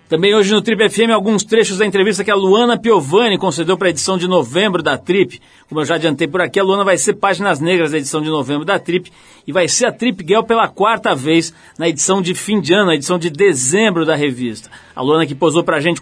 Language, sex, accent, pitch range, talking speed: Portuguese, male, Brazilian, 145-185 Hz, 250 wpm